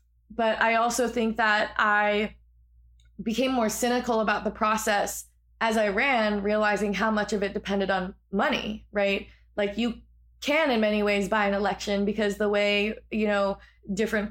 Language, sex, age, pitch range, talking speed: English, female, 20-39, 205-230 Hz, 165 wpm